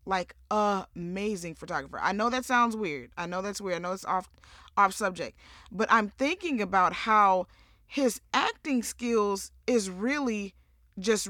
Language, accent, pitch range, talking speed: English, American, 190-235 Hz, 160 wpm